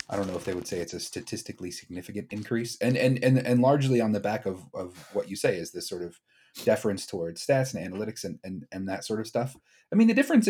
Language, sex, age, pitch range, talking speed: English, male, 30-49, 95-120 Hz, 255 wpm